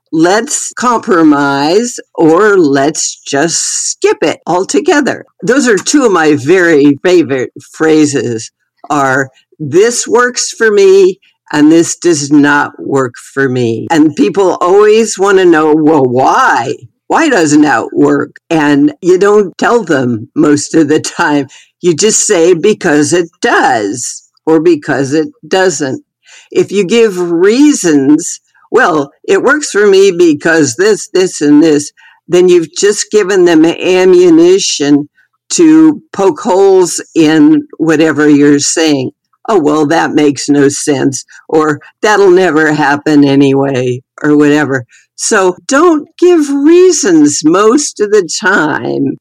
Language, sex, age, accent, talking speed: English, female, 50-69, American, 130 wpm